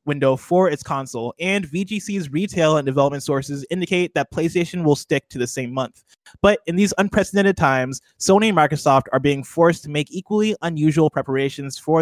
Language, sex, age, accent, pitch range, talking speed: English, male, 20-39, American, 135-180 Hz, 180 wpm